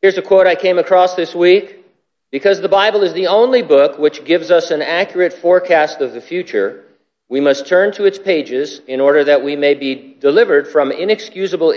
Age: 50-69